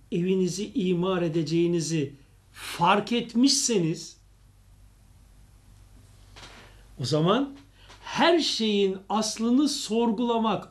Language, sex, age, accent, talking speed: Turkish, male, 60-79, native, 60 wpm